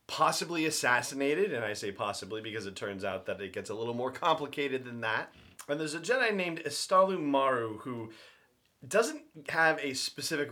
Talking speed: 175 wpm